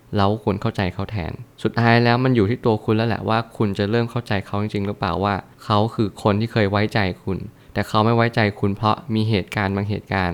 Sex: male